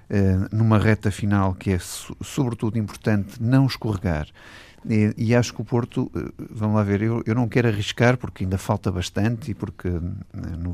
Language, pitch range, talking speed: Portuguese, 90-110 Hz, 170 wpm